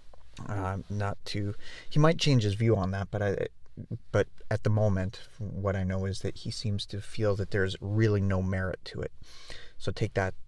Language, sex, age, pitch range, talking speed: English, male, 30-49, 95-110 Hz, 200 wpm